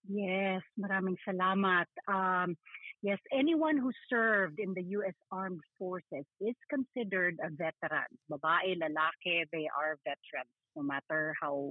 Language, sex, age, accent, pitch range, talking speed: English, female, 40-59, Filipino, 160-215 Hz, 130 wpm